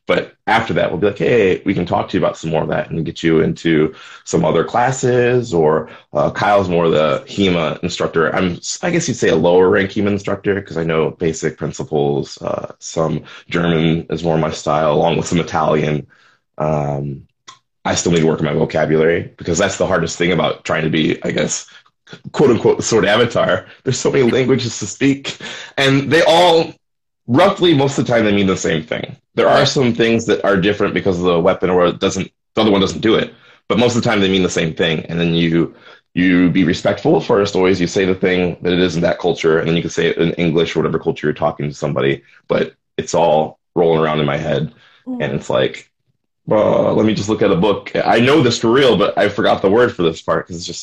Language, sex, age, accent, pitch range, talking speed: English, male, 20-39, American, 80-115 Hz, 240 wpm